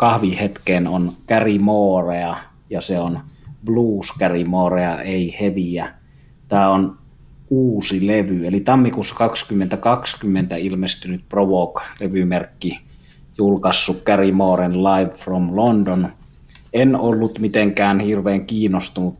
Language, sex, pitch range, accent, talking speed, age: Finnish, male, 90-100 Hz, native, 90 wpm, 30-49